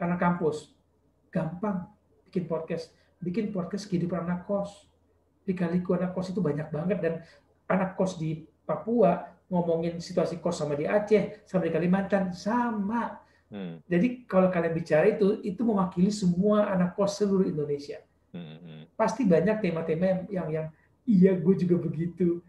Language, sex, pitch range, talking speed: Indonesian, male, 155-200 Hz, 140 wpm